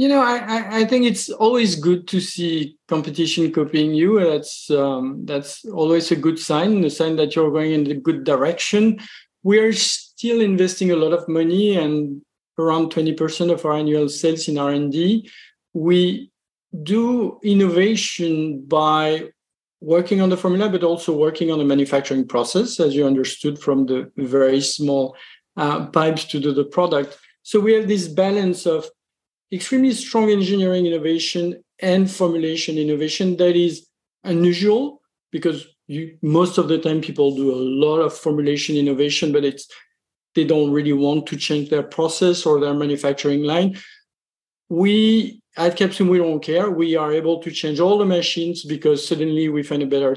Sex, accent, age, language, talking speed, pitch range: male, French, 50-69, English, 165 wpm, 150-185 Hz